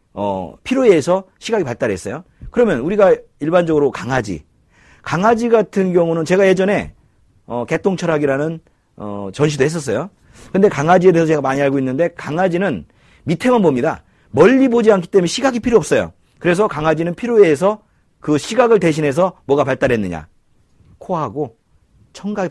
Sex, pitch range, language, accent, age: male, 125-195 Hz, Korean, native, 40-59